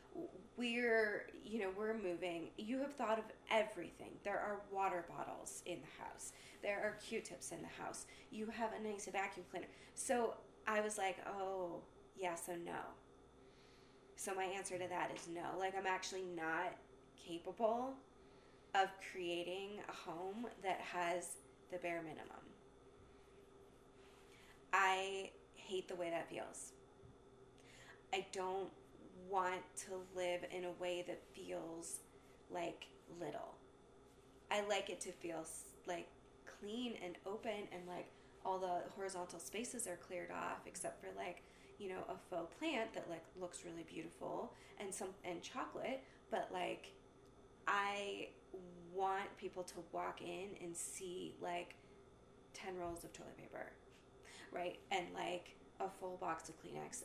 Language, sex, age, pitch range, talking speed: English, female, 20-39, 175-200 Hz, 140 wpm